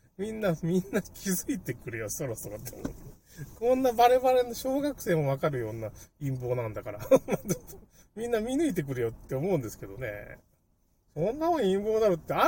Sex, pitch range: male, 115-190 Hz